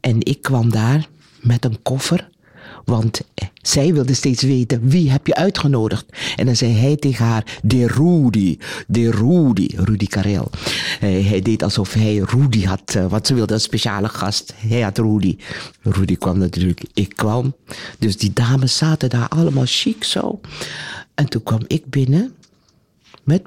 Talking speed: 160 wpm